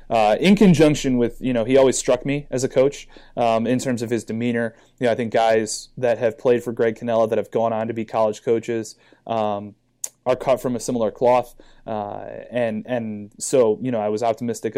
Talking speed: 220 wpm